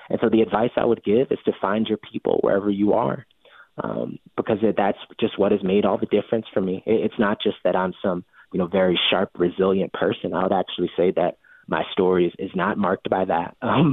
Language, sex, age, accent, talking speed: English, male, 30-49, American, 230 wpm